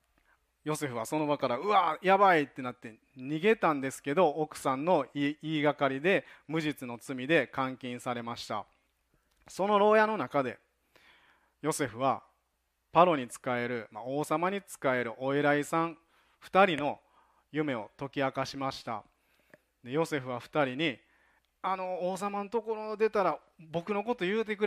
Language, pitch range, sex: Japanese, 130-185 Hz, male